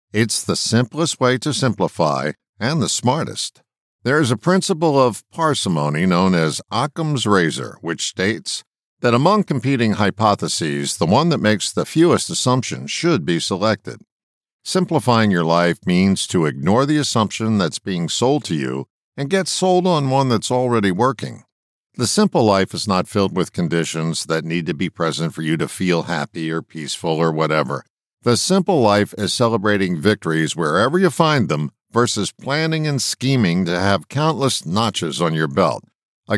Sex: male